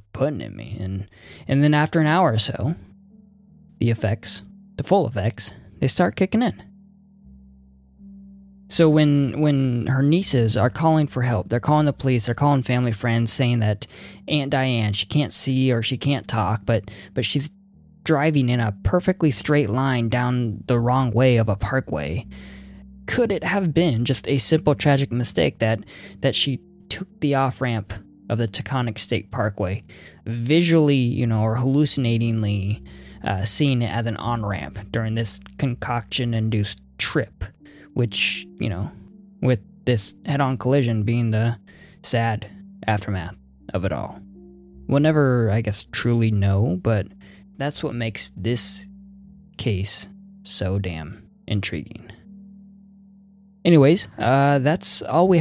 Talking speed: 145 wpm